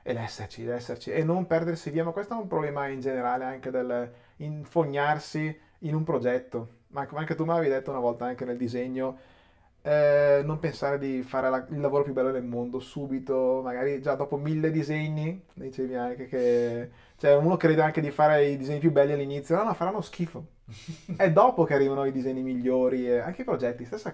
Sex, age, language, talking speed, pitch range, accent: male, 30-49, Italian, 200 wpm, 125-165 Hz, native